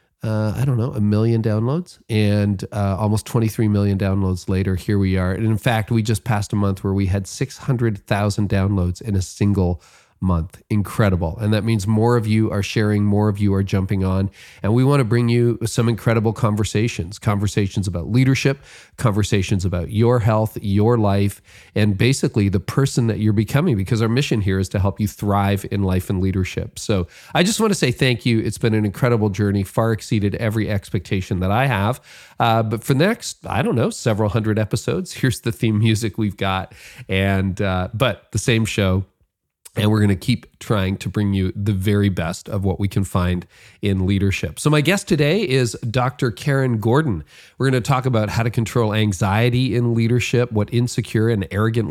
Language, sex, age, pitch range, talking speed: English, male, 40-59, 100-120 Hz, 200 wpm